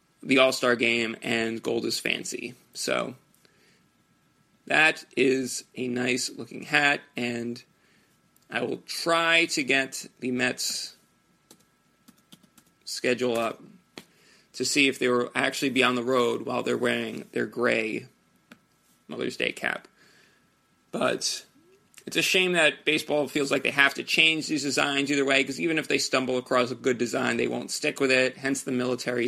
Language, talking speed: English, 150 wpm